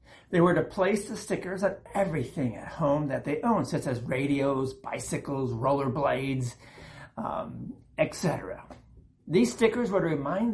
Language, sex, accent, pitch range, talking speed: English, male, American, 140-225 Hz, 140 wpm